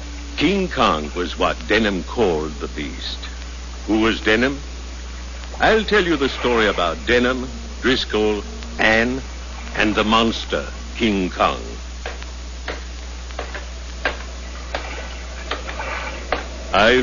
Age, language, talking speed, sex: 60-79, English, 90 wpm, male